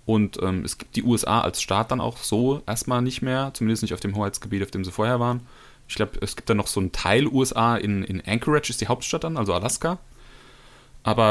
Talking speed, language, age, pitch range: 230 wpm, German, 30-49, 100-130 Hz